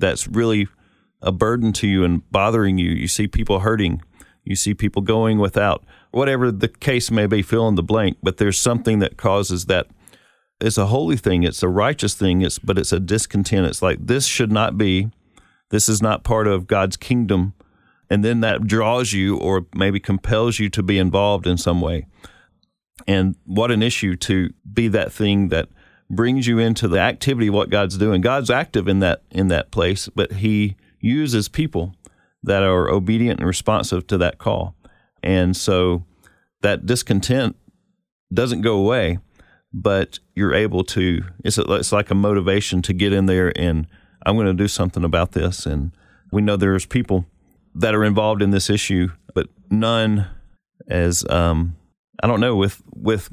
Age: 40-59